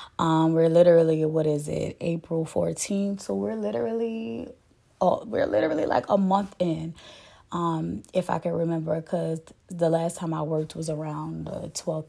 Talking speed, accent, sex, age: 165 wpm, American, female, 20-39